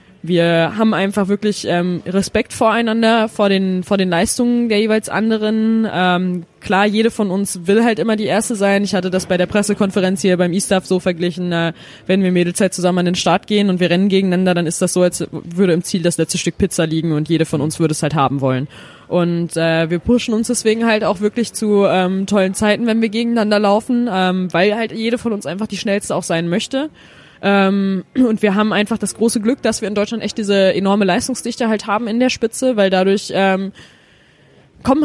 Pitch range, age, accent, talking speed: 185-220 Hz, 20-39, German, 215 wpm